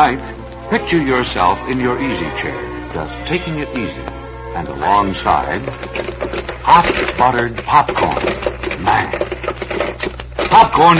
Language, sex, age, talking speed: English, male, 60-79, 95 wpm